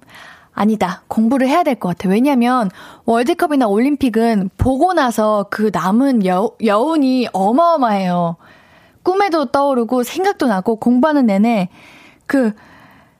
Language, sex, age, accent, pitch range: Korean, female, 20-39, native, 210-295 Hz